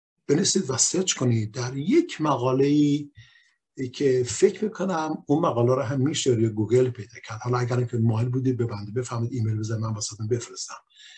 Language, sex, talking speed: Persian, male, 175 wpm